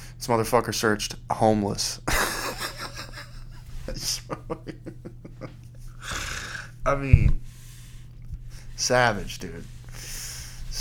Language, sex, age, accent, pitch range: English, male, 20-39, American, 115-125 Hz